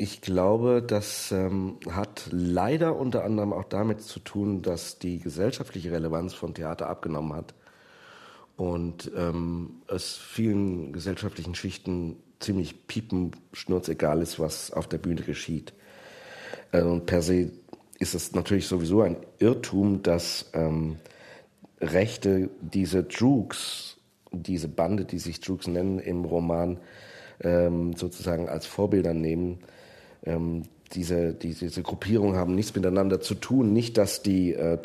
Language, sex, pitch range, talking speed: German, male, 85-100 Hz, 130 wpm